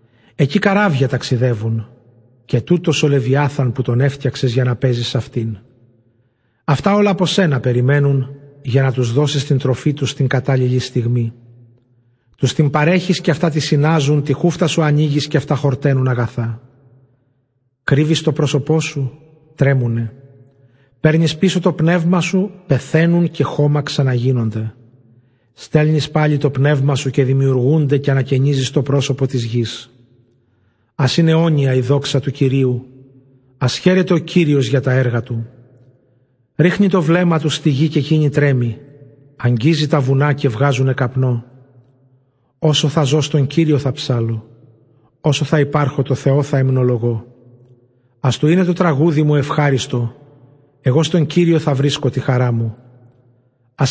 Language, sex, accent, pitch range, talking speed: Greek, male, native, 125-150 Hz, 145 wpm